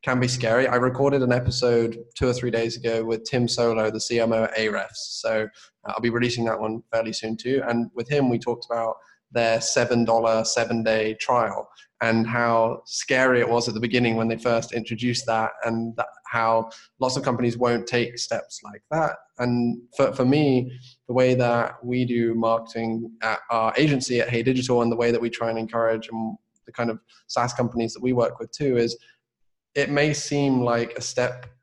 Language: English